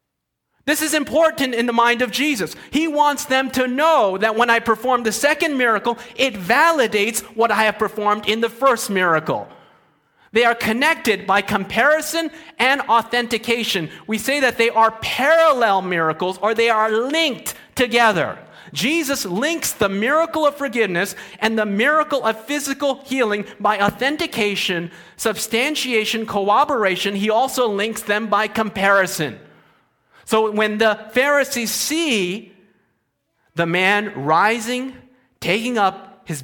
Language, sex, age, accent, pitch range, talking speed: English, male, 30-49, American, 180-250 Hz, 135 wpm